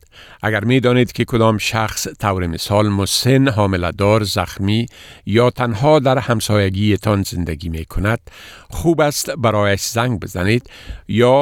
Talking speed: 130 wpm